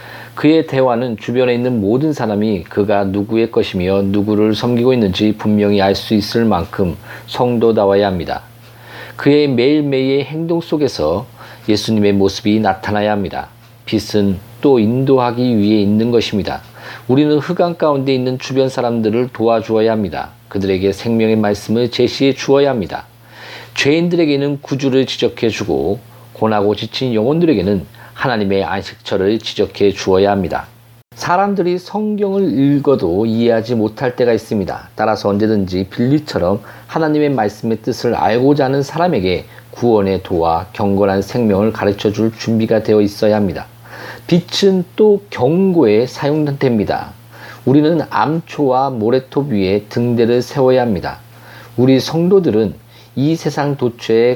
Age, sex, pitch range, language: 40-59, male, 105-135 Hz, Korean